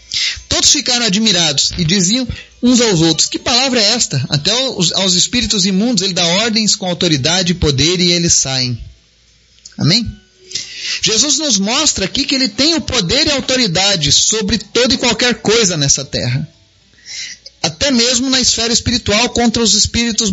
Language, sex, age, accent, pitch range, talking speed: Portuguese, male, 30-49, Brazilian, 170-255 Hz, 155 wpm